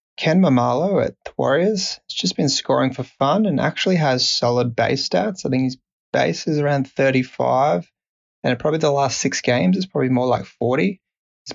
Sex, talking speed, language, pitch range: male, 180 wpm, English, 125-135 Hz